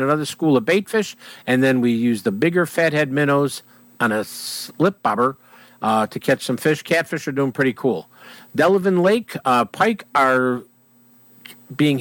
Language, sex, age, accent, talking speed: English, male, 50-69, American, 165 wpm